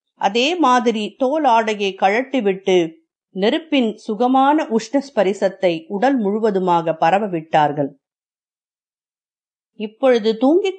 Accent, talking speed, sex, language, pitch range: native, 70 wpm, female, Tamil, 190-260 Hz